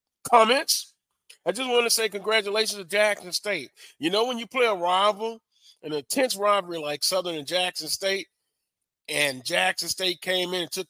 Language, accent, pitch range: English, American, 155-205 Hz